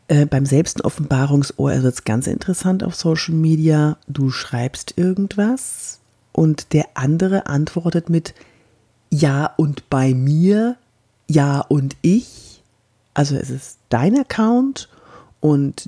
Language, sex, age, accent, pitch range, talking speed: German, female, 40-59, German, 130-170 Hz, 115 wpm